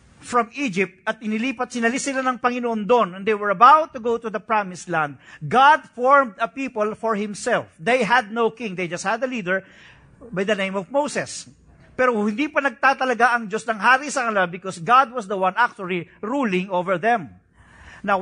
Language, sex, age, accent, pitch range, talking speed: English, male, 50-69, Filipino, 195-270 Hz, 190 wpm